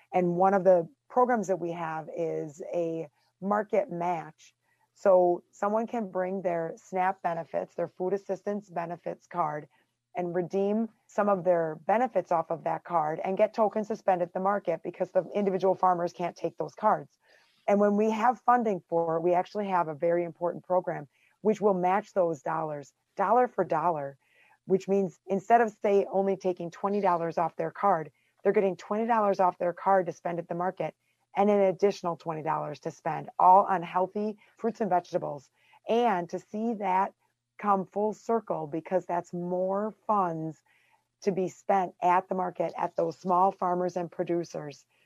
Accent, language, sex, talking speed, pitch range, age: American, English, female, 170 wpm, 165-195 Hz, 30-49